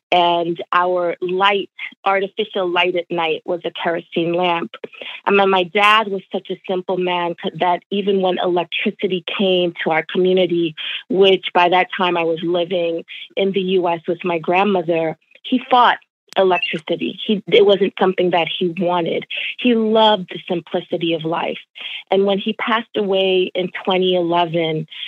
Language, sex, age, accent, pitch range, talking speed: English, female, 30-49, American, 175-205 Hz, 155 wpm